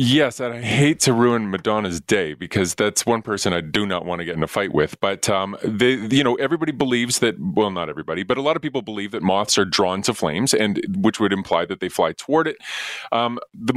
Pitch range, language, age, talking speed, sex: 100-120 Hz, English, 30-49, 245 wpm, male